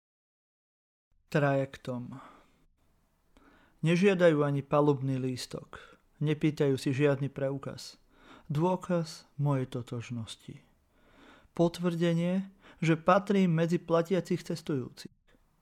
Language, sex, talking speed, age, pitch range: Slovak, male, 70 wpm, 30-49, 125-160 Hz